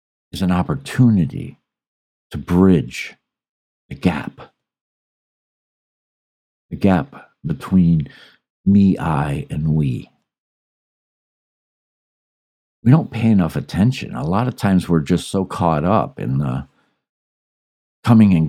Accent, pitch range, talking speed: American, 80-110 Hz, 100 wpm